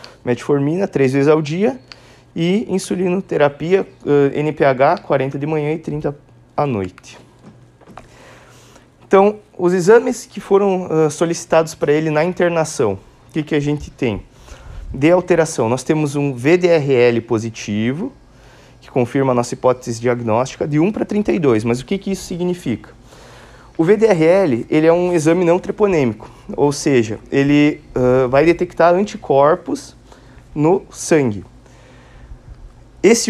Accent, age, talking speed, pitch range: Brazilian, 20-39, 130 wpm, 135-180 Hz